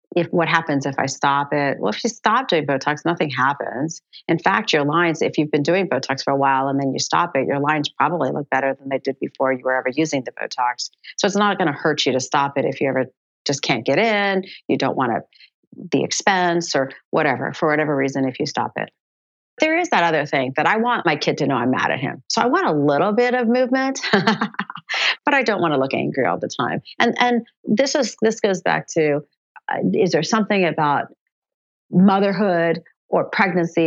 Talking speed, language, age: 225 wpm, English, 40-59